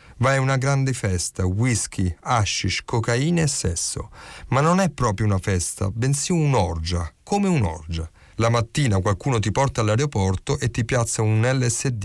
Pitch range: 90-120 Hz